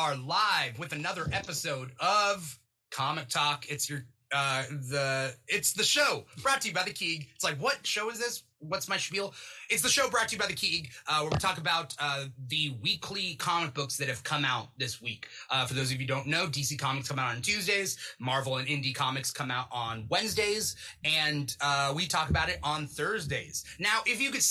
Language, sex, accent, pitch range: English, male, American, 135-180 Hz